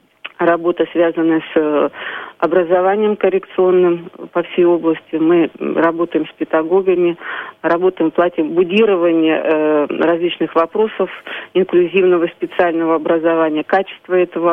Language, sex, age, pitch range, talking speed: Russian, female, 40-59, 160-185 Hz, 95 wpm